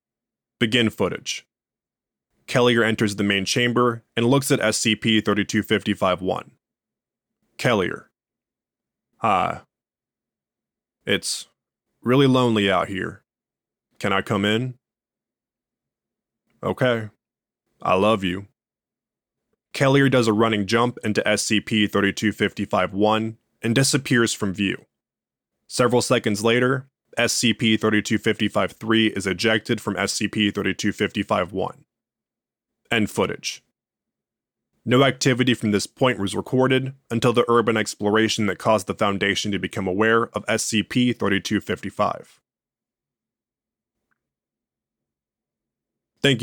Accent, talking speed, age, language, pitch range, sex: American, 90 wpm, 20-39, English, 105-120 Hz, male